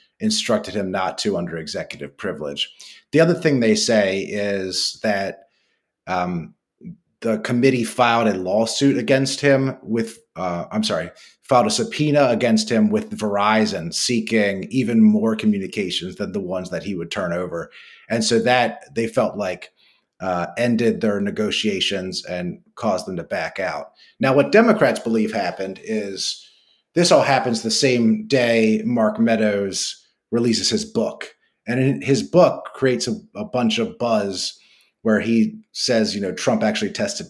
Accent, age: American, 30-49